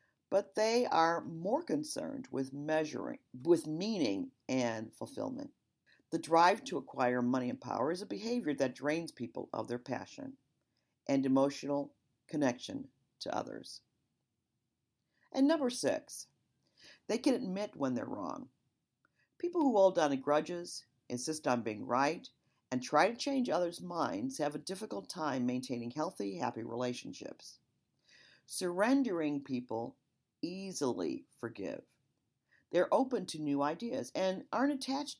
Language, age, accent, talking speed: English, 50-69, American, 130 wpm